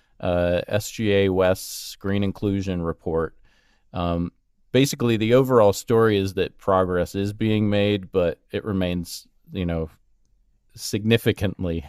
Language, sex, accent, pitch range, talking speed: English, male, American, 90-110 Hz, 110 wpm